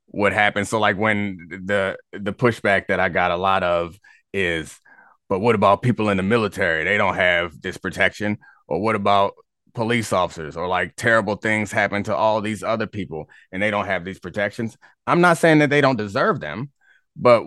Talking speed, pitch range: 195 wpm, 100-140 Hz